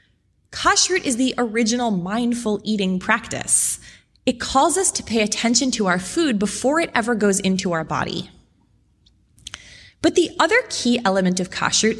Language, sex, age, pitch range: English, female, 20-39, 185-250 Hz